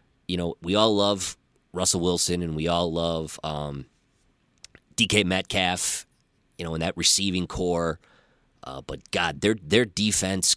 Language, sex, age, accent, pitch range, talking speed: English, male, 30-49, American, 80-100 Hz, 150 wpm